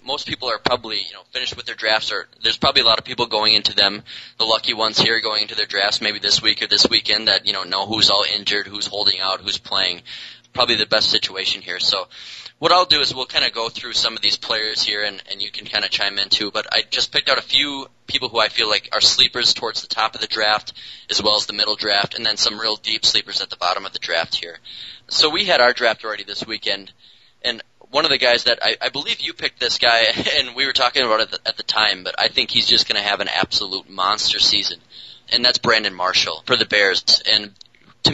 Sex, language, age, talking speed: male, English, 20-39, 265 wpm